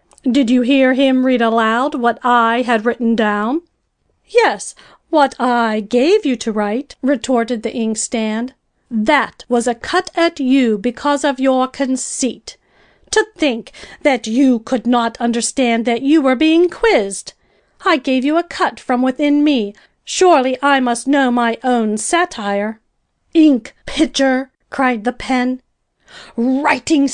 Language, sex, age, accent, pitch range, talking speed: English, female, 40-59, American, 230-280 Hz, 140 wpm